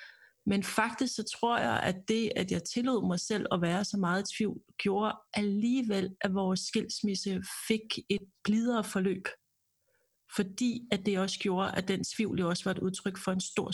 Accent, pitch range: native, 190-220 Hz